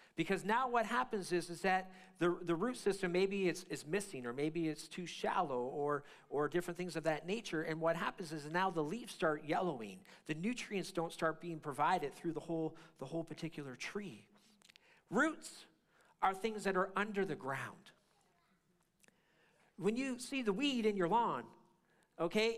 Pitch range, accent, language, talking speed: 175-235 Hz, American, English, 175 wpm